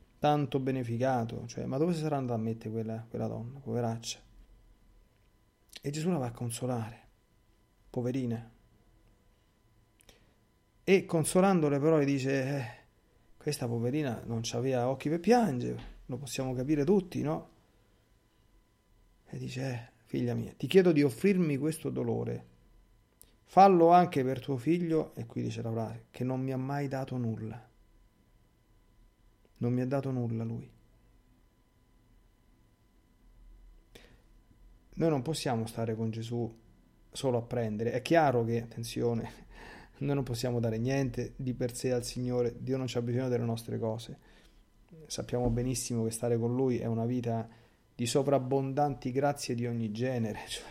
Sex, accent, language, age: male, native, Italian, 40-59